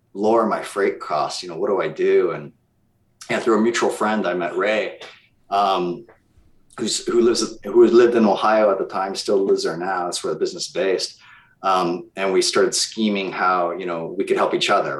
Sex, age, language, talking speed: male, 30-49, English, 215 wpm